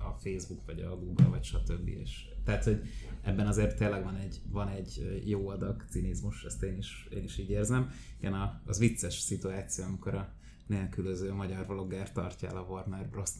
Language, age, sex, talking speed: Hungarian, 20-39, male, 175 wpm